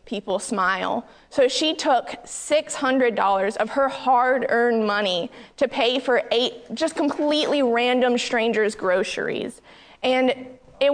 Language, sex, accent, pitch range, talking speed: English, female, American, 220-265 Hz, 120 wpm